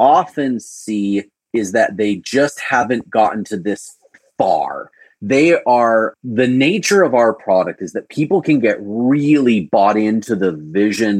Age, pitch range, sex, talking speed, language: 30-49, 100-135 Hz, male, 150 wpm, English